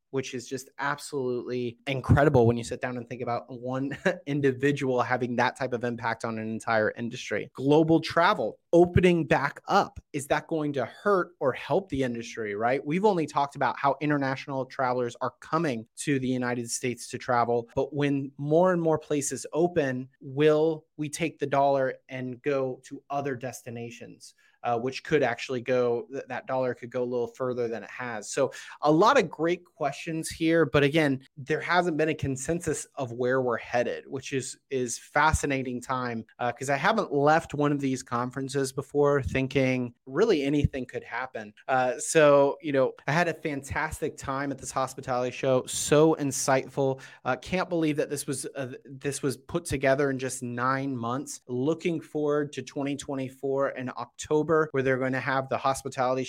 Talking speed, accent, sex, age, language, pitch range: 180 wpm, American, male, 30-49, English, 125-145 Hz